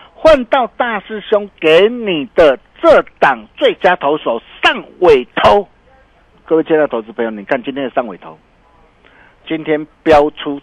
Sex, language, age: male, Chinese, 50-69